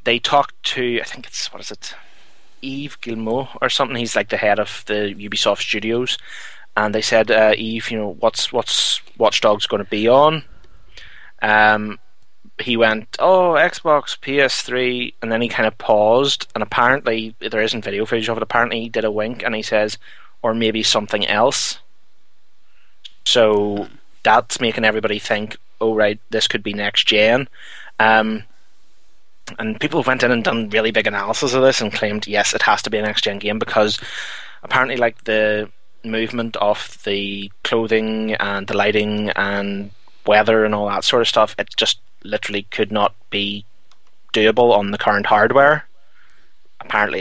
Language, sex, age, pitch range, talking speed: English, male, 20-39, 105-120 Hz, 170 wpm